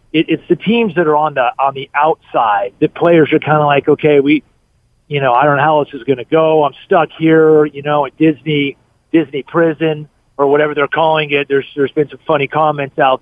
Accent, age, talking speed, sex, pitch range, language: American, 40-59, 225 wpm, male, 130-155 Hz, English